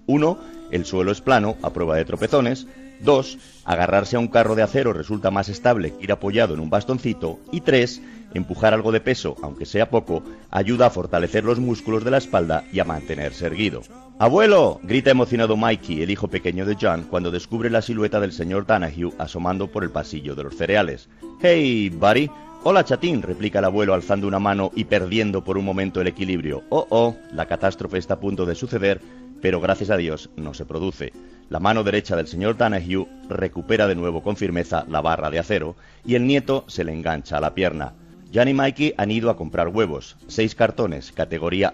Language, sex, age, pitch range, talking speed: Spanish, male, 40-59, 85-115 Hz, 195 wpm